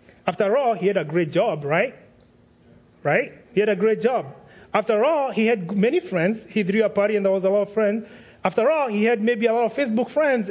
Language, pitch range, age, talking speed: English, 190-260 Hz, 30-49, 235 wpm